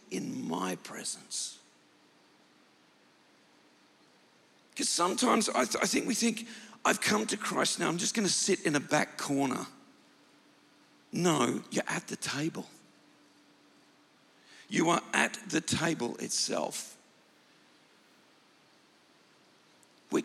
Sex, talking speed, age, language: male, 105 wpm, 50-69, English